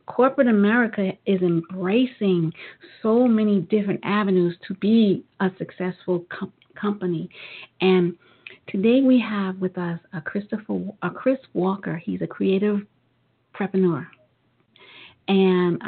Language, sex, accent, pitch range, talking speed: English, female, American, 185-225 Hz, 115 wpm